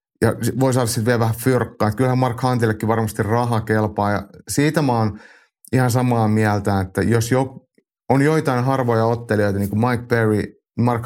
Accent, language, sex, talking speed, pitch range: native, Finnish, male, 180 wpm, 100-125 Hz